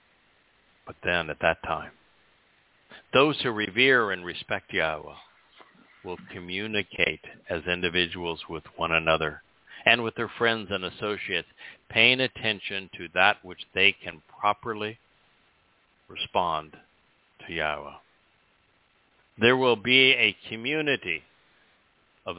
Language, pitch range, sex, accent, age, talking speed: English, 85-110 Hz, male, American, 60-79, 110 wpm